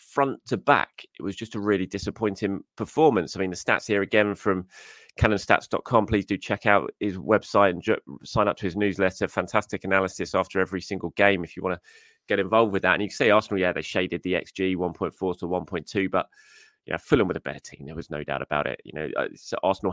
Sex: male